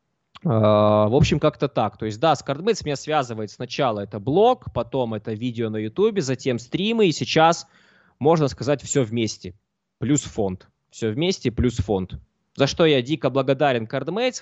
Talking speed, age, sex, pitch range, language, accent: 160 wpm, 20-39, male, 115-145 Hz, Russian, native